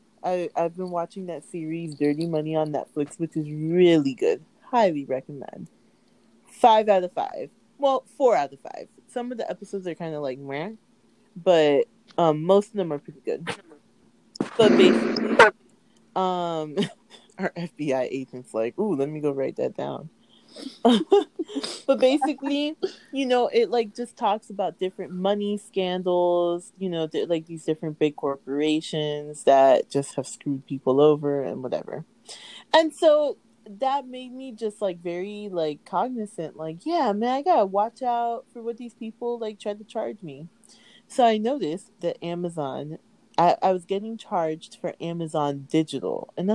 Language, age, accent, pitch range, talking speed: English, 30-49, American, 160-235 Hz, 160 wpm